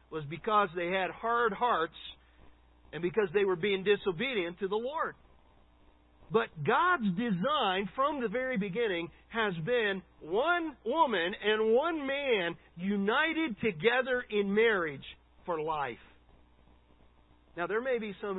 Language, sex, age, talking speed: English, male, 50-69, 130 wpm